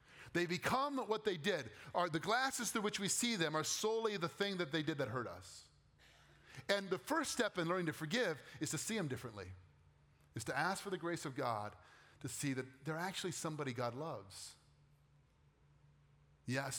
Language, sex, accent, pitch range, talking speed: English, male, American, 125-155 Hz, 190 wpm